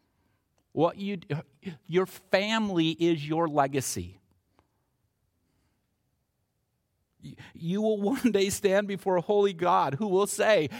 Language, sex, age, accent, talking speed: English, male, 50-69, American, 105 wpm